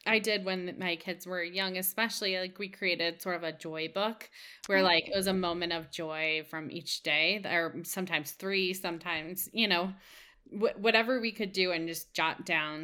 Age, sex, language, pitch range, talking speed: 20-39, female, English, 170-215 Hz, 190 wpm